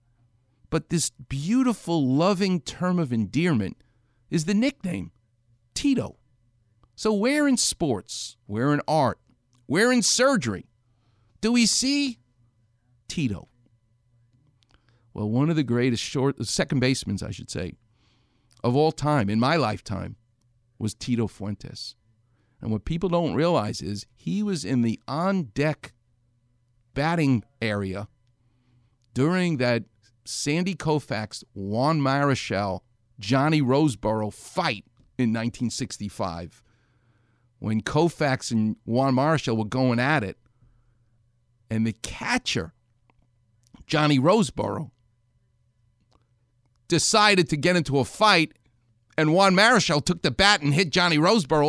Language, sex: English, male